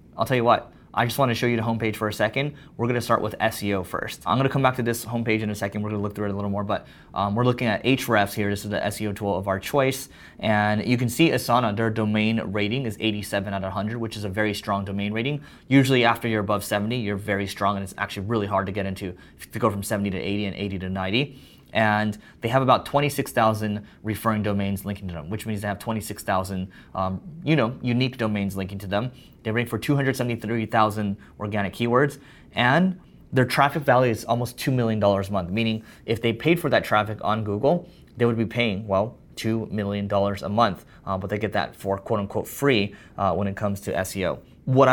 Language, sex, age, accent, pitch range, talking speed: English, male, 20-39, American, 100-120 Hz, 225 wpm